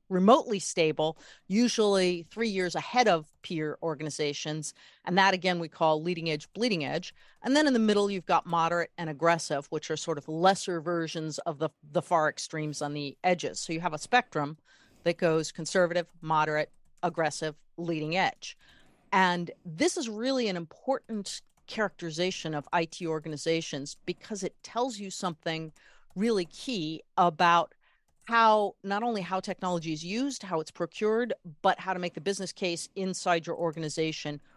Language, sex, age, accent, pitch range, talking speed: English, female, 40-59, American, 160-195 Hz, 160 wpm